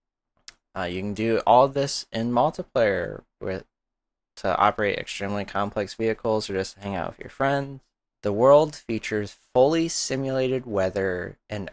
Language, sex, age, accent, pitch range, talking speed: English, male, 20-39, American, 95-120 Hz, 145 wpm